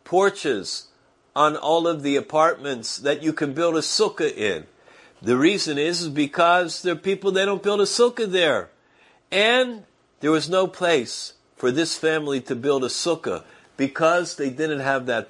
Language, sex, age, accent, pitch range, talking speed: English, male, 50-69, American, 135-190 Hz, 170 wpm